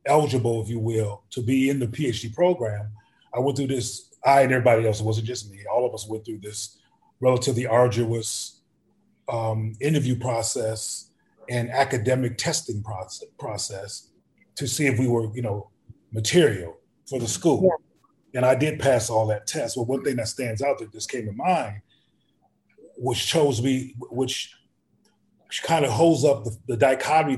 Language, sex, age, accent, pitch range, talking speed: English, male, 30-49, American, 110-140 Hz, 175 wpm